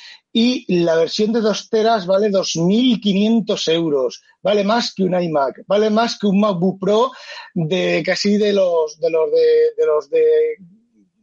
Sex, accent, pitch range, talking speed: male, Spanish, 165-225 Hz, 165 wpm